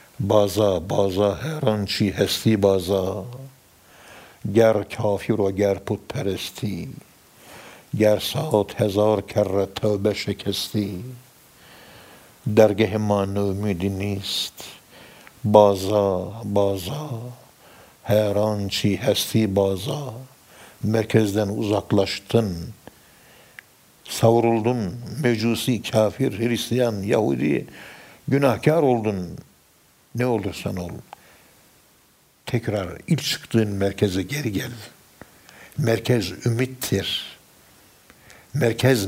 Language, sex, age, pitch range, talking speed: Turkish, male, 60-79, 100-115 Hz, 75 wpm